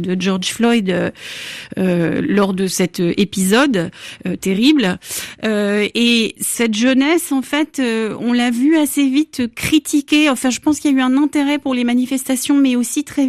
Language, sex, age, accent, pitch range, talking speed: French, female, 30-49, French, 210-265 Hz, 170 wpm